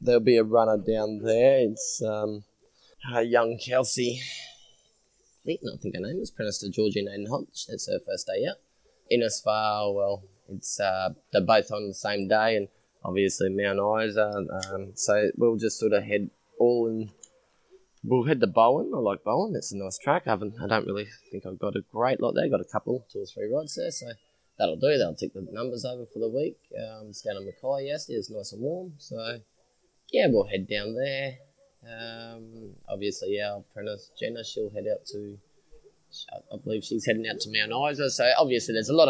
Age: 20-39